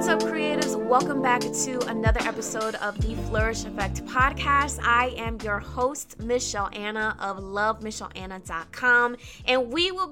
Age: 20-39